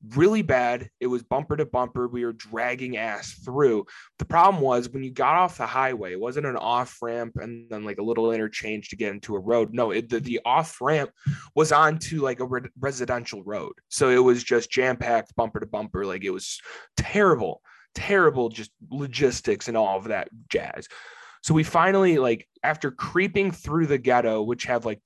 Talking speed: 195 wpm